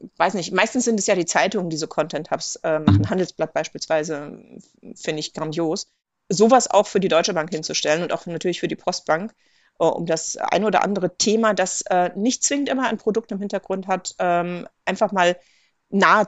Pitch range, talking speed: 170-220 Hz, 195 wpm